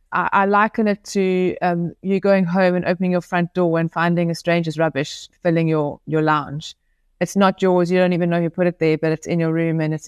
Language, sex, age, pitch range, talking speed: English, female, 20-39, 160-180 Hz, 240 wpm